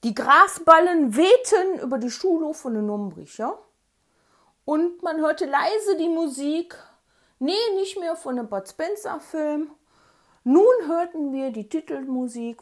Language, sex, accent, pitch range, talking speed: German, female, German, 235-365 Hz, 130 wpm